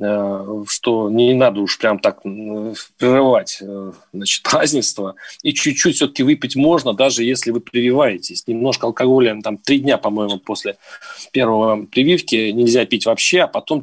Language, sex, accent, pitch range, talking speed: Russian, male, native, 120-170 Hz, 135 wpm